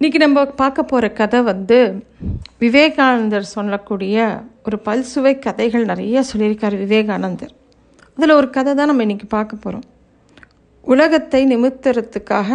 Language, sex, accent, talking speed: Tamil, female, native, 115 wpm